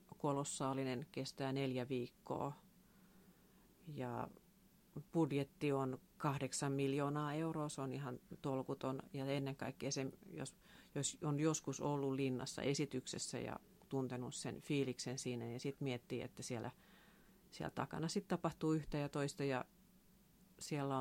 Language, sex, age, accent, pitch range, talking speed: Finnish, female, 40-59, native, 130-165 Hz, 130 wpm